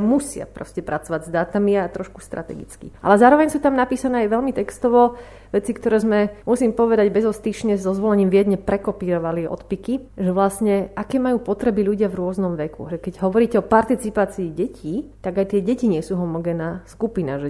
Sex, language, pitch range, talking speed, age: female, Slovak, 180-225 Hz, 180 wpm, 30-49